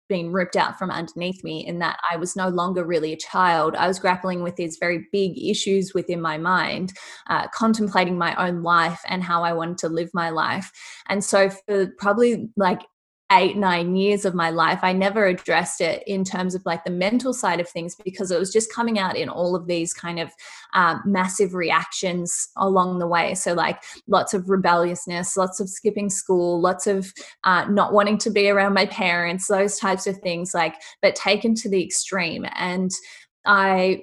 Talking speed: 195 wpm